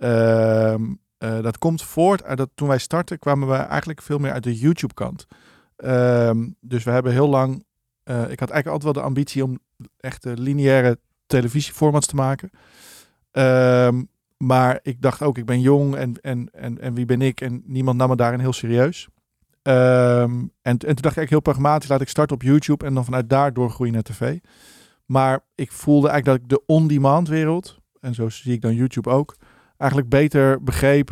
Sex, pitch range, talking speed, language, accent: male, 125-140 Hz, 195 wpm, Dutch, Dutch